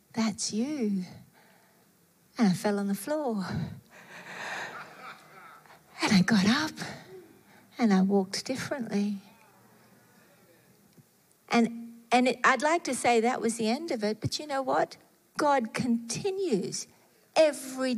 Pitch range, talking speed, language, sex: 220-285 Hz, 115 wpm, English, female